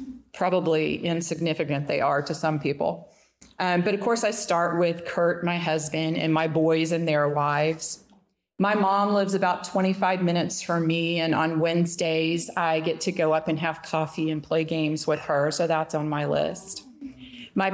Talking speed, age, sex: 180 wpm, 40-59, female